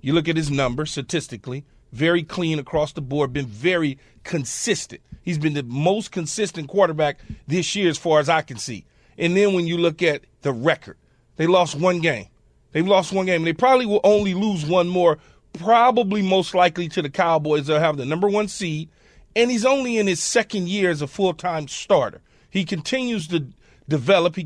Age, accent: 40-59, American